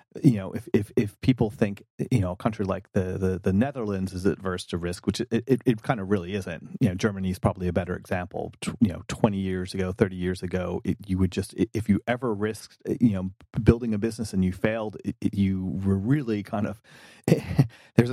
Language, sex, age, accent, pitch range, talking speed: English, male, 30-49, American, 95-115 Hz, 215 wpm